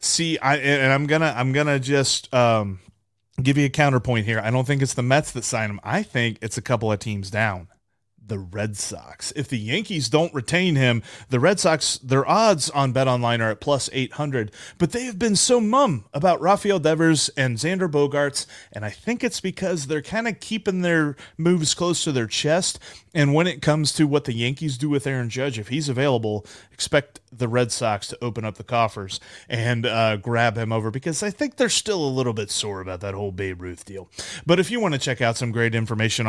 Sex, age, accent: male, 30-49, American